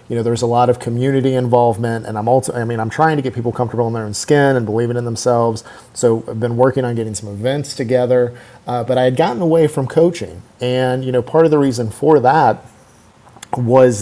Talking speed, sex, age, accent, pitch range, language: 225 wpm, male, 40-59, American, 115-130 Hz, English